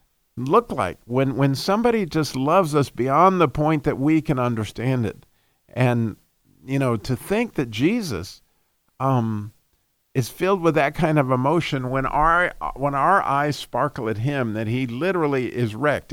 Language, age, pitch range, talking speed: English, 50-69, 120-155 Hz, 165 wpm